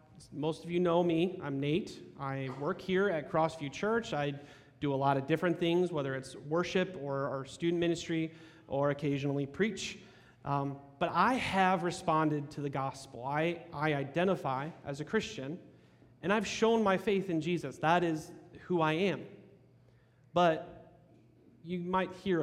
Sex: male